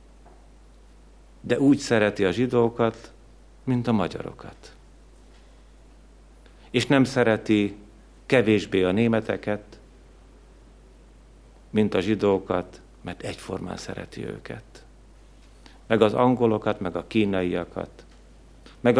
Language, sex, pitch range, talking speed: Hungarian, male, 95-120 Hz, 90 wpm